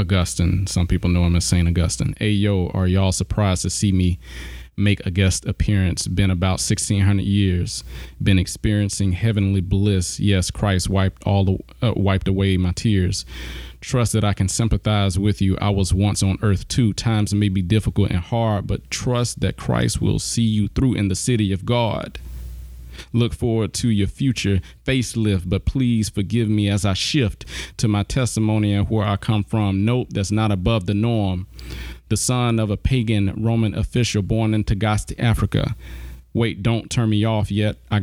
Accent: American